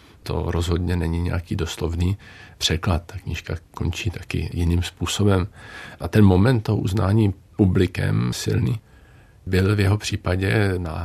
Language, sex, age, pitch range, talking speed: Czech, male, 50-69, 90-110 Hz, 130 wpm